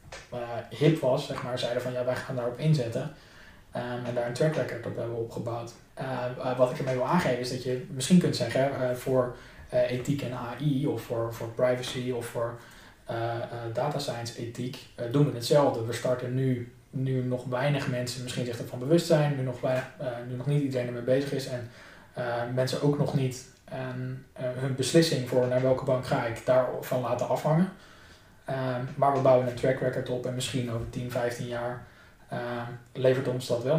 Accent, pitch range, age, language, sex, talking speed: Dutch, 120-135 Hz, 20-39, Dutch, male, 200 wpm